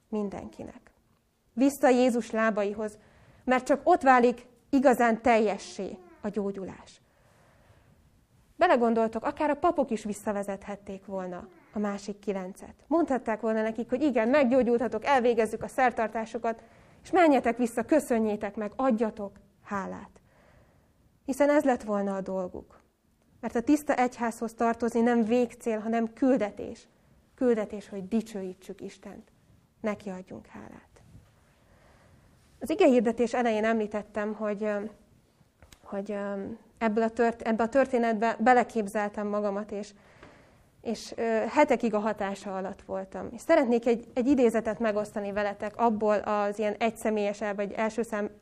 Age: 20-39